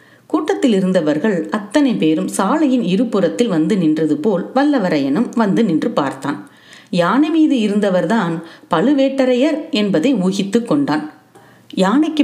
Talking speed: 105 wpm